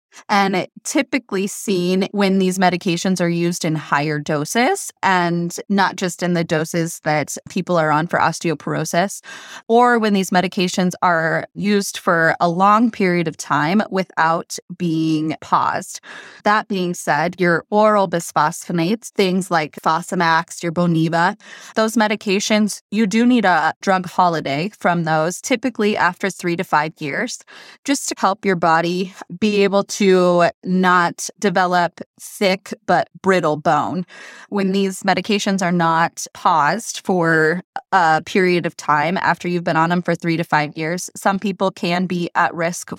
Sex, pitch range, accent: female, 170-200 Hz, American